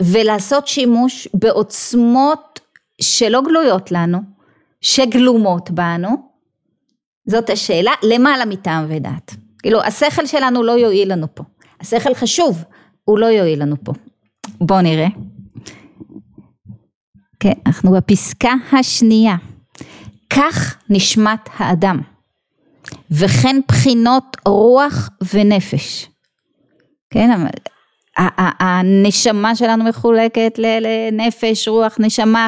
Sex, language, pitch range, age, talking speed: female, Hebrew, 190-240 Hz, 30-49, 90 wpm